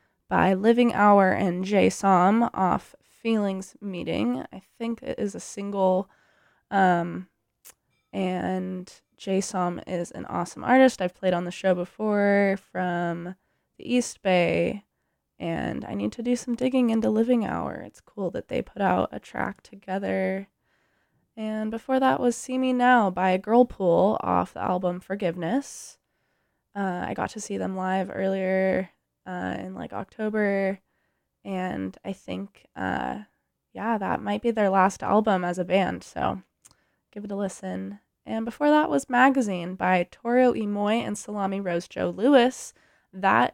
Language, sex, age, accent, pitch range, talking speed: English, female, 20-39, American, 175-215 Hz, 150 wpm